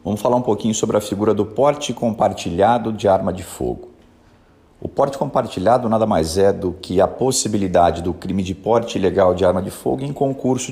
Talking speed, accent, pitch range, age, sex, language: 195 wpm, Brazilian, 95-125 Hz, 40-59, male, Portuguese